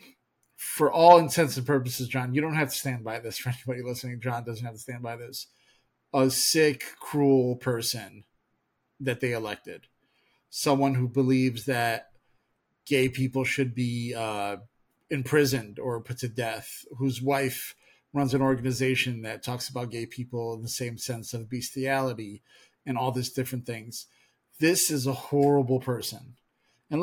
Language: English